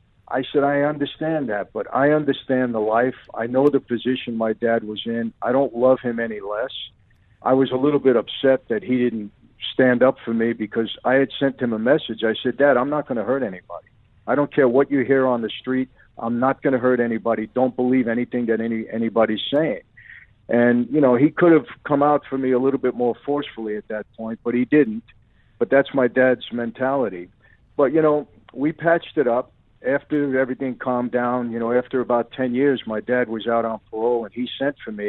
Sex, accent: male, American